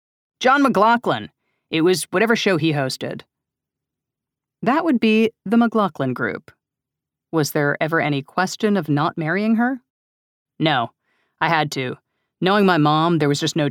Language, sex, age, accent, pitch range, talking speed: English, female, 40-59, American, 145-190 Hz, 150 wpm